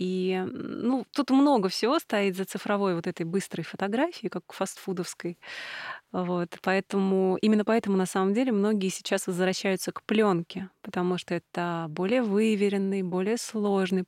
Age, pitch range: 20-39, 180-220 Hz